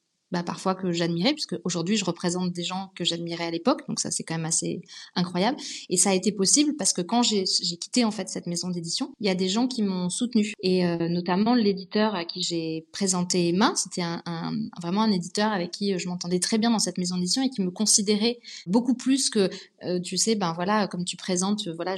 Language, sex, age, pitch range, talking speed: French, female, 20-39, 170-205 Hz, 235 wpm